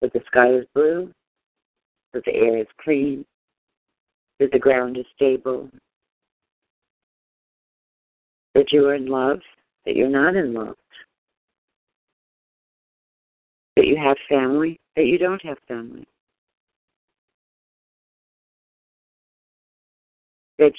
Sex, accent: female, American